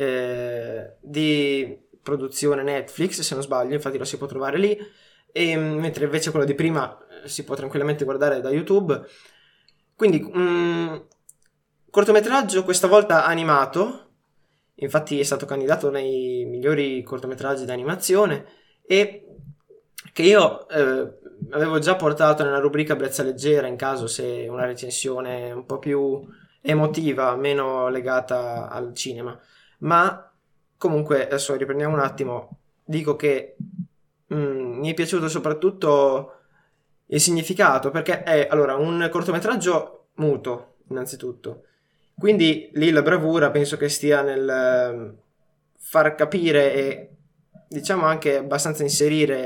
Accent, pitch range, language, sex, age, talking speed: native, 135-160 Hz, Italian, male, 20-39, 125 wpm